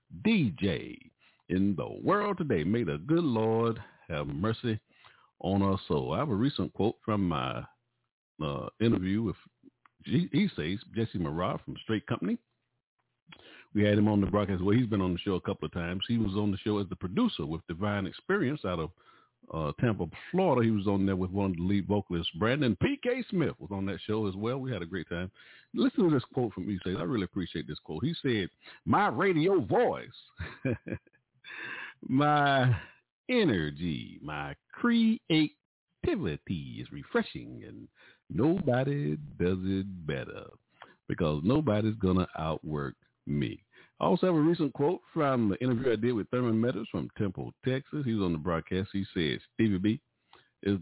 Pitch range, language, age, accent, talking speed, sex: 95-150 Hz, English, 50-69, American, 175 wpm, male